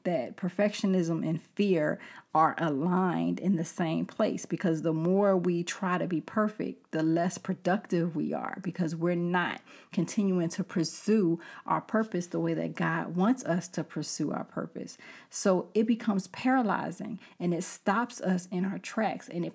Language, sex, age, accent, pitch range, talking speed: English, female, 30-49, American, 165-195 Hz, 165 wpm